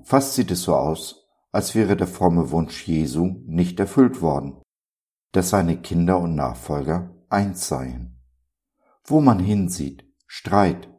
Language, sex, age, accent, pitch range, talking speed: German, male, 50-69, German, 80-95 Hz, 135 wpm